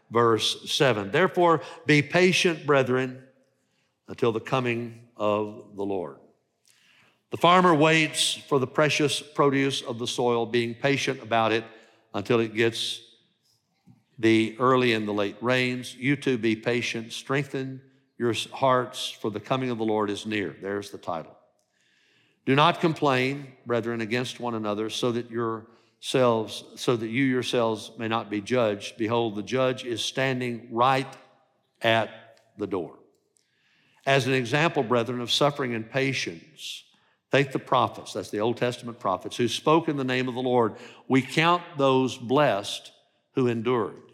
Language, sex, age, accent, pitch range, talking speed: English, male, 50-69, American, 115-135 Hz, 150 wpm